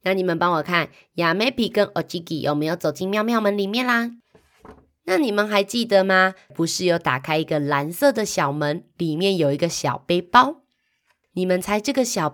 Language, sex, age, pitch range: Chinese, female, 20-39, 155-210 Hz